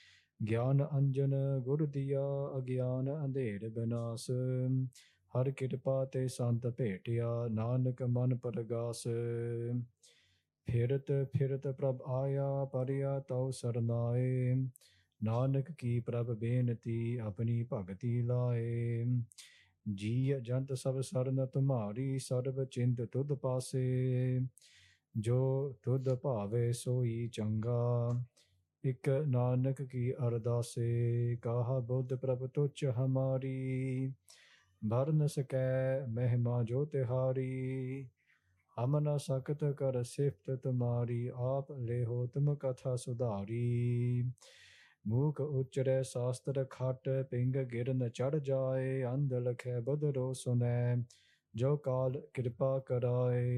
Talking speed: 75 wpm